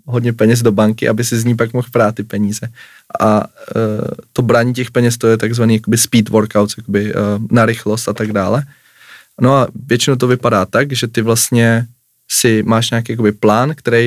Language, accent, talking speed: Czech, native, 190 wpm